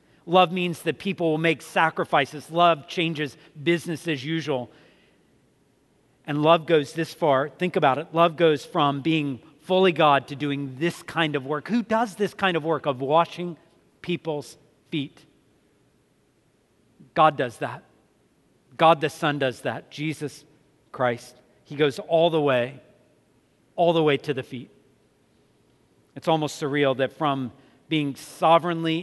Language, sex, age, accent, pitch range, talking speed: English, male, 40-59, American, 140-165 Hz, 145 wpm